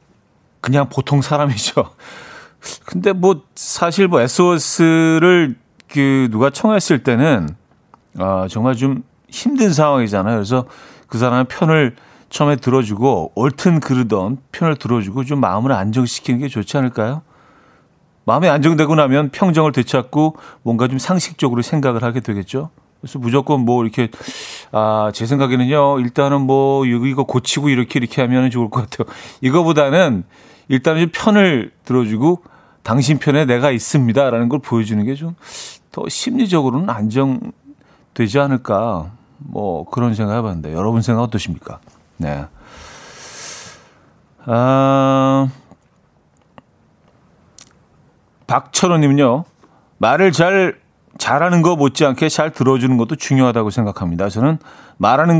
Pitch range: 120-155 Hz